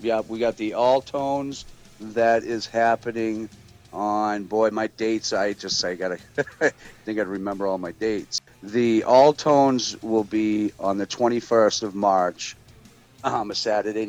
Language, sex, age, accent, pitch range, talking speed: English, male, 40-59, American, 95-110 Hz, 160 wpm